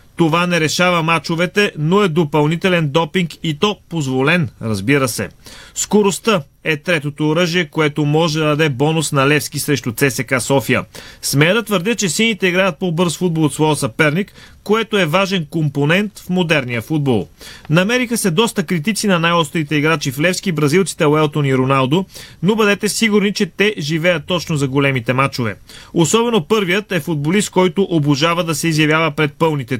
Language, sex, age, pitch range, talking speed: Bulgarian, male, 30-49, 145-190 Hz, 160 wpm